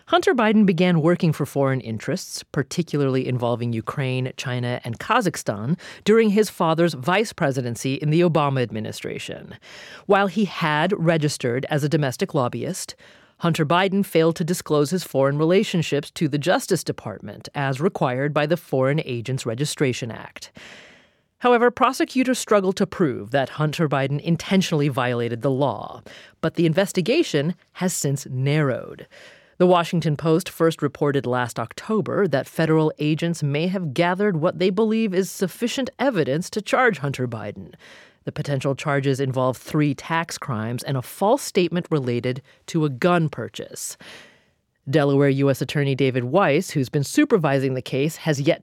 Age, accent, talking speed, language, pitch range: 30-49, American, 145 wpm, English, 135-185 Hz